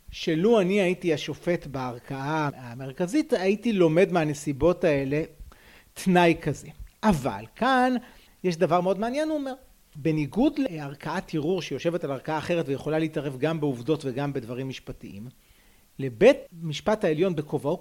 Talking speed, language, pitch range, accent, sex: 130 wpm, Hebrew, 150-230 Hz, native, male